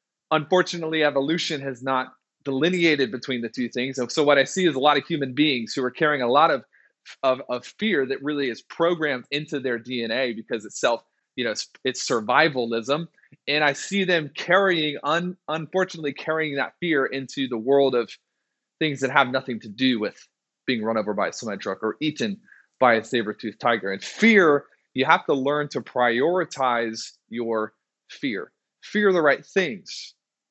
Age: 30-49